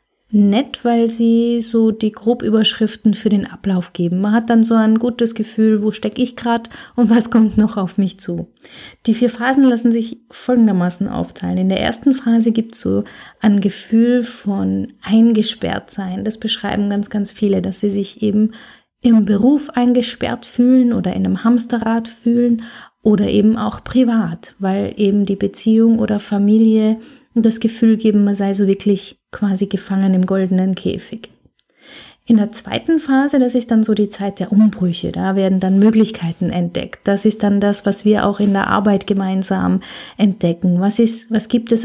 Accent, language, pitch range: German, German, 195-230 Hz